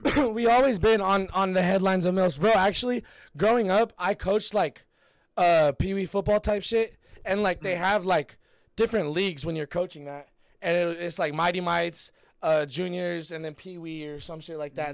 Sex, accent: male, American